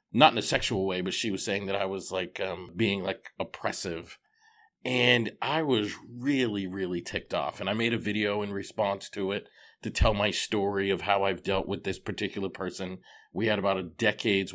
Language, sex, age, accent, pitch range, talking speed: English, male, 40-59, American, 95-115 Hz, 205 wpm